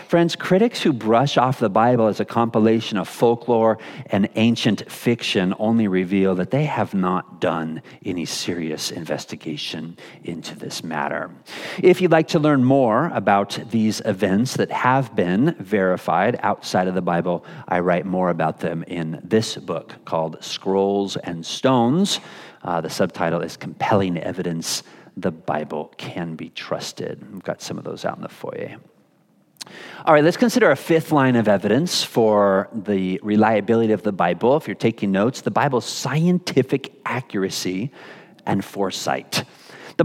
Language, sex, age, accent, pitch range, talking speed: English, male, 40-59, American, 110-140 Hz, 155 wpm